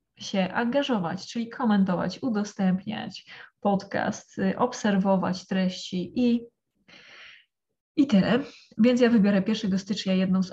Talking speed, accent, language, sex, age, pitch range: 105 wpm, native, Polish, female, 20-39, 190-220 Hz